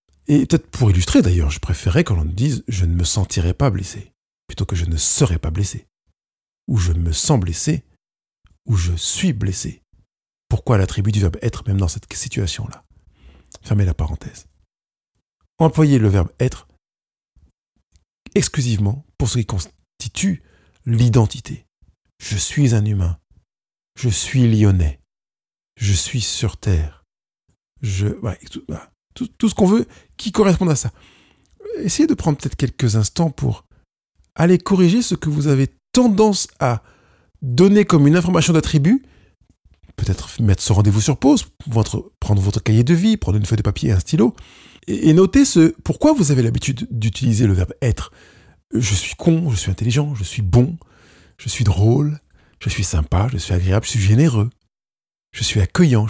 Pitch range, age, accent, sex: 95-145 Hz, 50-69, French, male